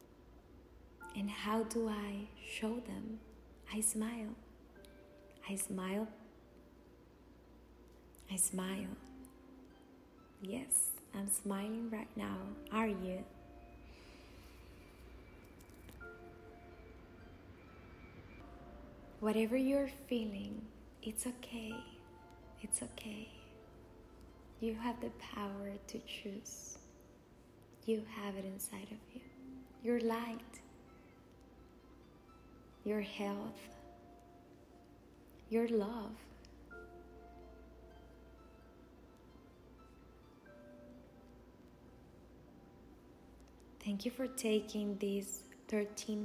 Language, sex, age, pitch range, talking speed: Spanish, female, 20-39, 180-225 Hz, 65 wpm